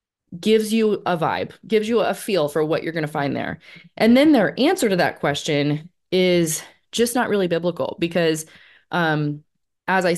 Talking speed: 185 wpm